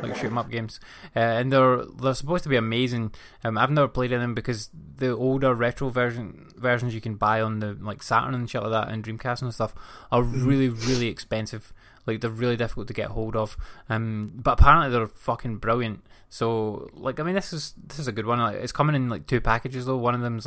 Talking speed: 240 wpm